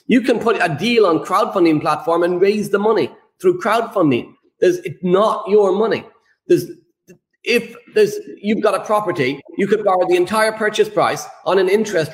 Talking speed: 180 wpm